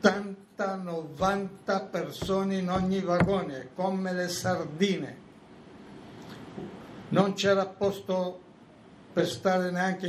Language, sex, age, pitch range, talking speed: Italian, male, 60-79, 150-180 Hz, 85 wpm